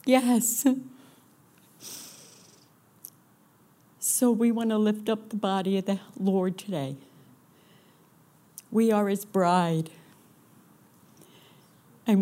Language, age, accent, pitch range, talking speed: English, 60-79, American, 170-210 Hz, 90 wpm